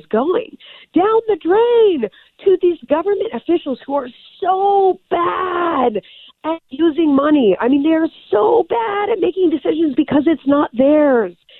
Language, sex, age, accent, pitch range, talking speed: English, female, 40-59, American, 195-315 Hz, 140 wpm